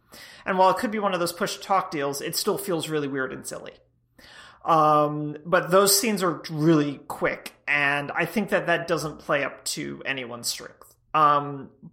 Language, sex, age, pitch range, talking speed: English, male, 30-49, 150-200 Hz, 185 wpm